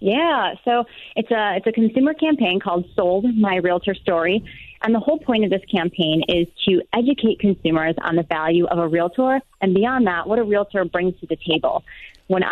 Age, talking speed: 30-49, 195 wpm